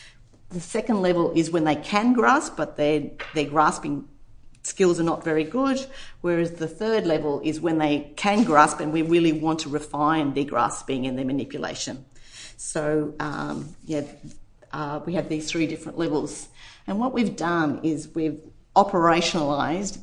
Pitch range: 145-170 Hz